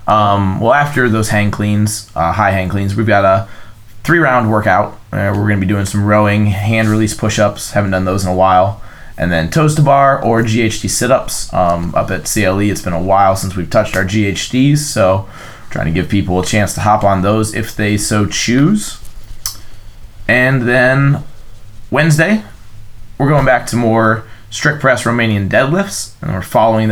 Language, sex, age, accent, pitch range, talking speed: English, male, 20-39, American, 100-120 Hz, 185 wpm